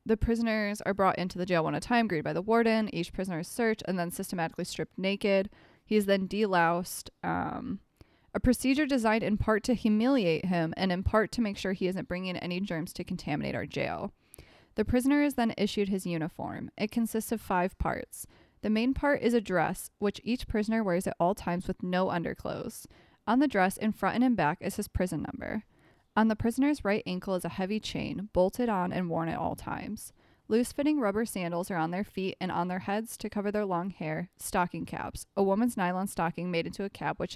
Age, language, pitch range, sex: 20-39, English, 180-220 Hz, female